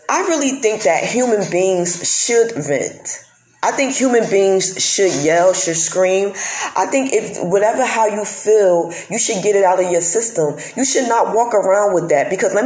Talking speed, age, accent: 190 wpm, 20-39, American